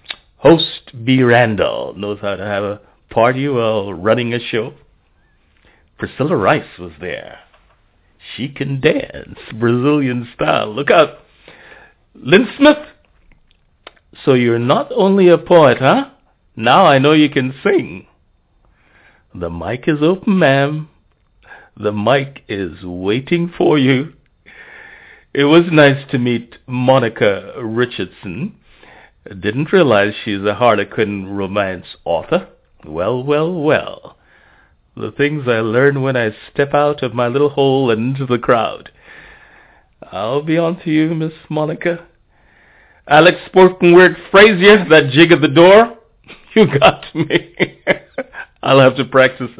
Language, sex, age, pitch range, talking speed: English, male, 60-79, 110-160 Hz, 130 wpm